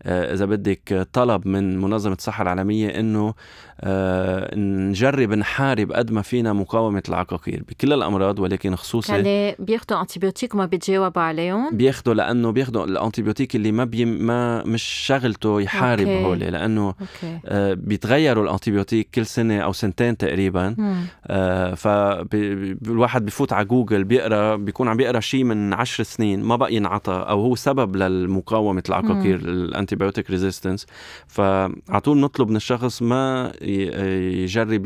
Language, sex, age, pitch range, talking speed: Arabic, male, 20-39, 95-115 Hz, 125 wpm